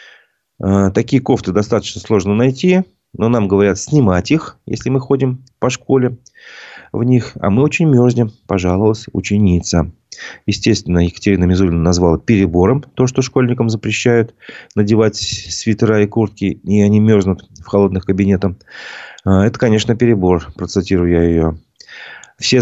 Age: 30-49